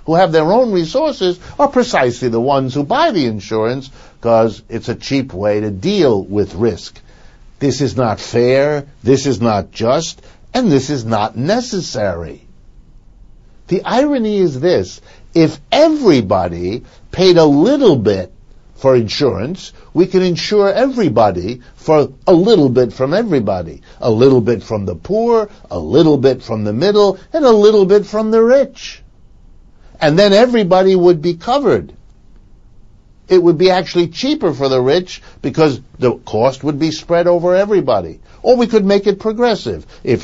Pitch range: 115-185 Hz